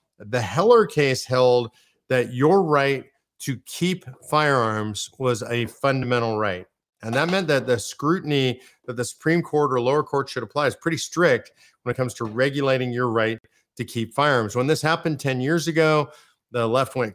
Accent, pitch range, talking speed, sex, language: American, 115-140 Hz, 180 wpm, male, English